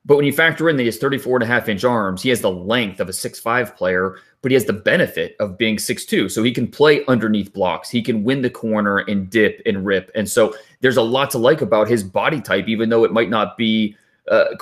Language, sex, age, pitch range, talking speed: English, male, 30-49, 105-125 Hz, 250 wpm